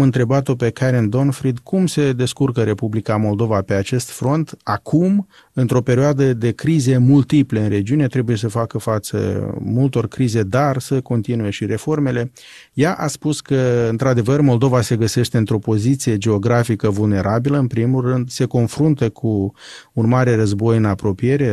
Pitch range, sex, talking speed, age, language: 110-140 Hz, male, 150 wpm, 30-49, Romanian